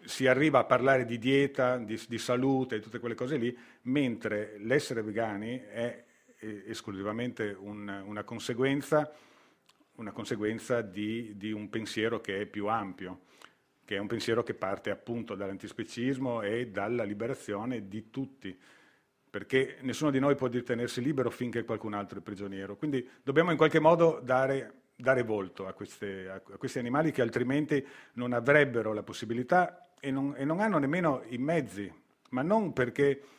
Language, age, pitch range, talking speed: Italian, 40-59, 105-130 Hz, 155 wpm